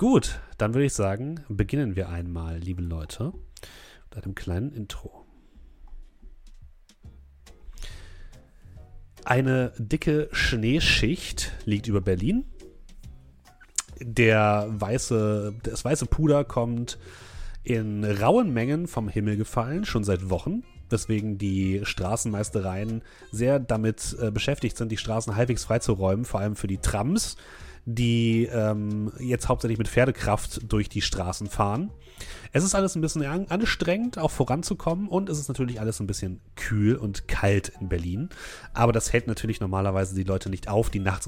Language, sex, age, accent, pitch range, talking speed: German, male, 30-49, German, 95-120 Hz, 130 wpm